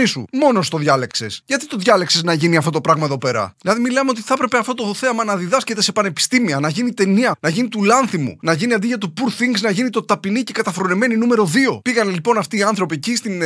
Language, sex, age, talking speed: English, male, 20-39, 240 wpm